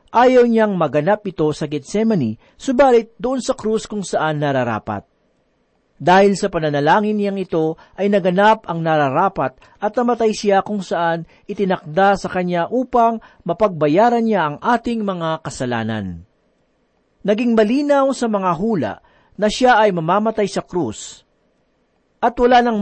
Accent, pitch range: native, 155-220 Hz